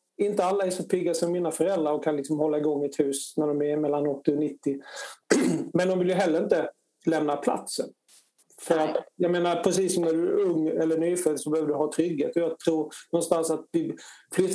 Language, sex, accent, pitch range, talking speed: Swedish, male, native, 155-185 Hz, 215 wpm